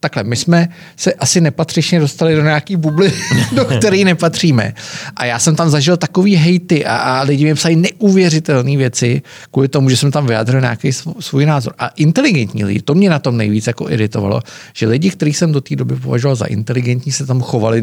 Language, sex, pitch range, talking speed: Czech, male, 115-155 Hz, 200 wpm